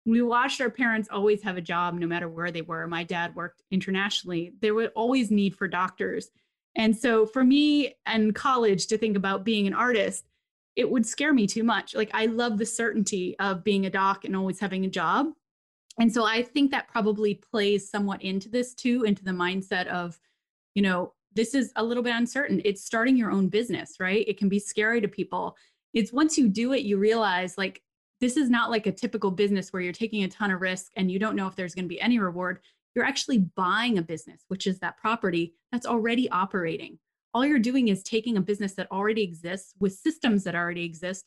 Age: 20-39